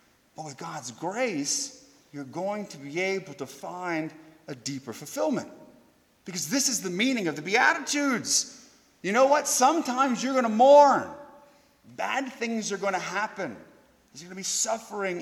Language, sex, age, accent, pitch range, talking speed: English, male, 40-59, American, 175-245 Hz, 160 wpm